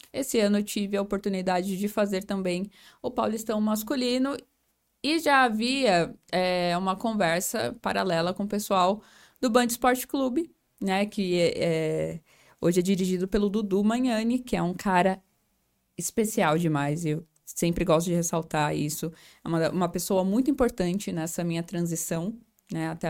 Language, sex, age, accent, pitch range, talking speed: Portuguese, female, 10-29, Brazilian, 175-225 Hz, 155 wpm